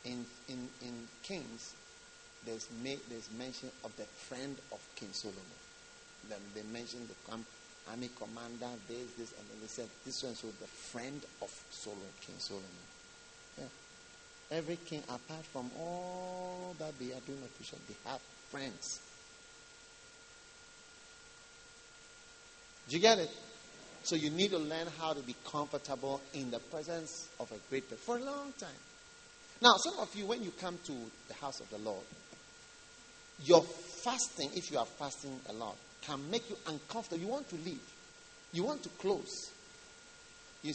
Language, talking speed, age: English, 160 wpm, 50-69